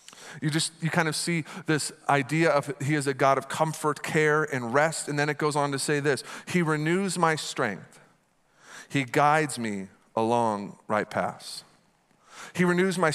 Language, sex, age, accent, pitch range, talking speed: English, male, 40-59, American, 140-180 Hz, 180 wpm